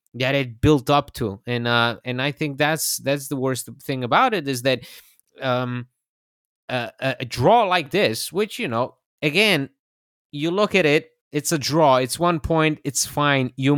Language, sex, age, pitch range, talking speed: English, male, 20-39, 125-175 Hz, 185 wpm